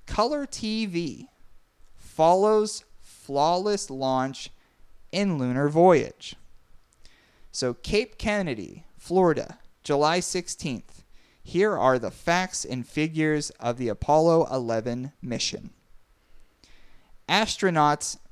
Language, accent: English, American